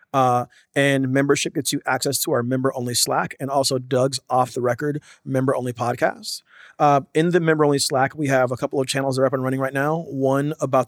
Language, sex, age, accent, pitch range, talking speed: English, male, 30-49, American, 130-145 Hz, 195 wpm